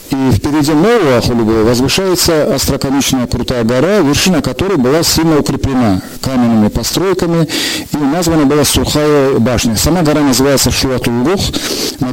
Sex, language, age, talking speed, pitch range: male, Russian, 50-69, 125 wpm, 120-150 Hz